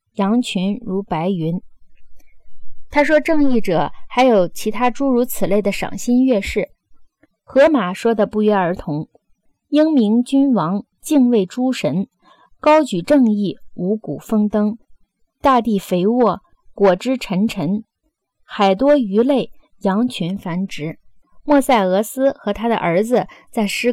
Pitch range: 195-255 Hz